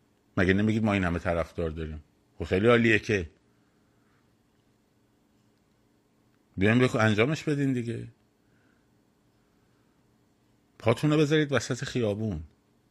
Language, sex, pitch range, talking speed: Persian, male, 95-120 Hz, 95 wpm